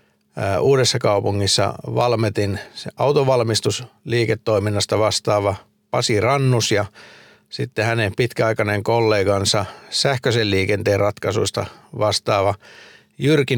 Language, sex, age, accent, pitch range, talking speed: Finnish, male, 50-69, native, 100-120 Hz, 80 wpm